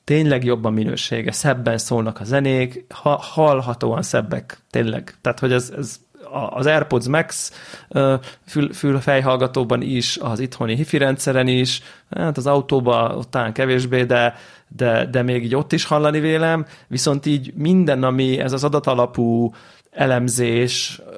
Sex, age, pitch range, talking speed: male, 30-49, 125-145 Hz, 140 wpm